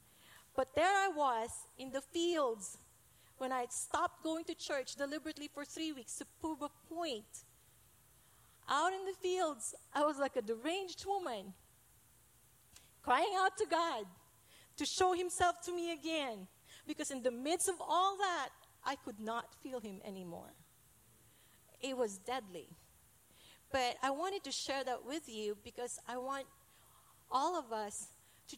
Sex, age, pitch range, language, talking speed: female, 40-59, 220-300 Hz, English, 155 wpm